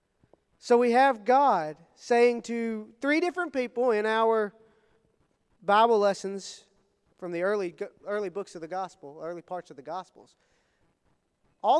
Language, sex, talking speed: English, male, 135 wpm